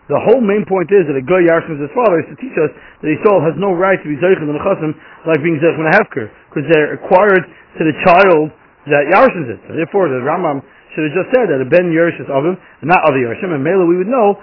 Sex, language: male, English